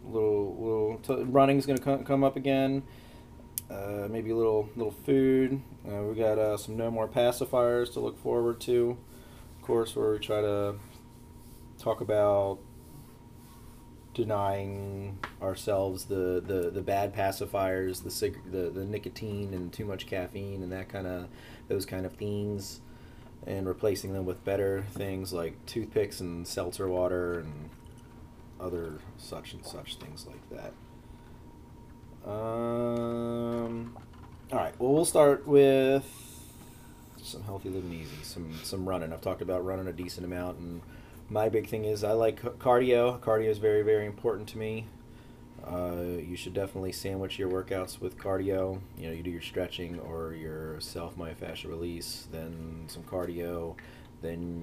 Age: 30-49